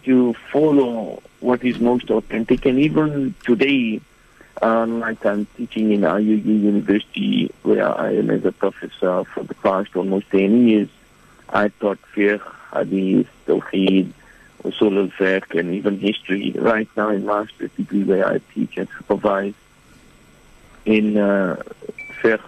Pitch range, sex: 105-125 Hz, male